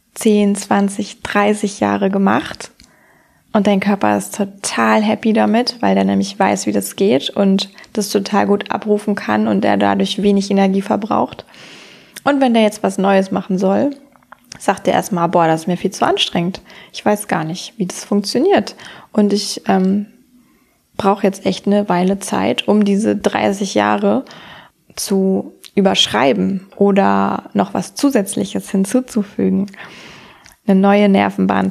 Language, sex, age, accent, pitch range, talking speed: German, female, 20-39, German, 185-215 Hz, 150 wpm